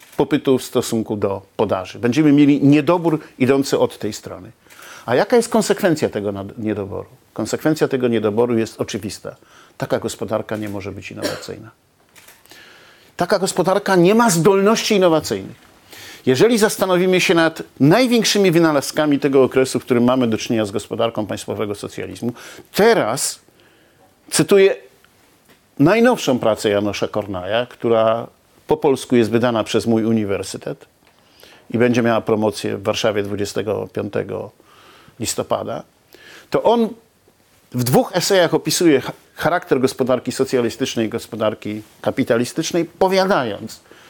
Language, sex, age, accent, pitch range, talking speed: Polish, male, 50-69, native, 115-170 Hz, 120 wpm